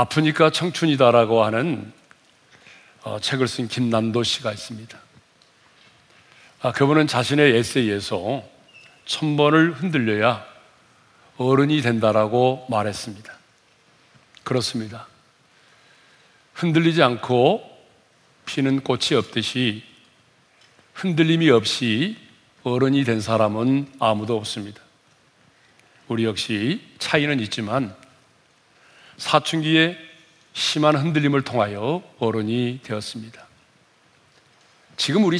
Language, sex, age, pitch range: Korean, male, 40-59, 115-150 Hz